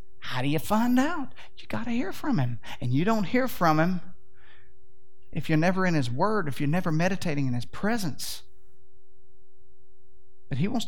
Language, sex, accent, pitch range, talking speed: English, male, American, 125-185 Hz, 175 wpm